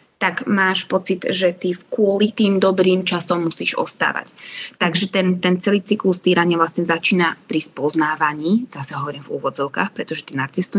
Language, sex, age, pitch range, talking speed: Slovak, female, 20-39, 165-200 Hz, 165 wpm